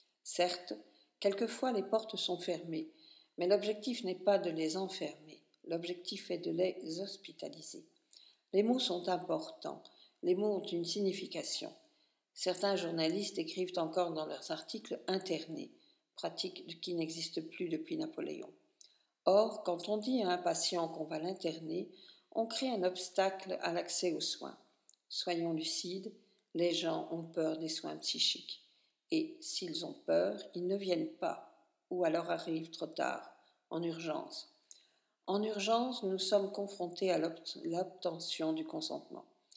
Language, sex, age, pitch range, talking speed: French, female, 50-69, 165-225 Hz, 145 wpm